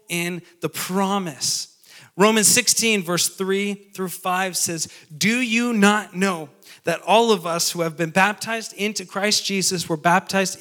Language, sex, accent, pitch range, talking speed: English, male, American, 160-195 Hz, 155 wpm